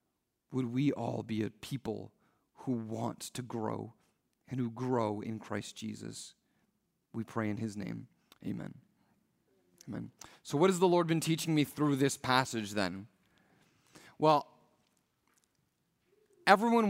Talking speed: 130 wpm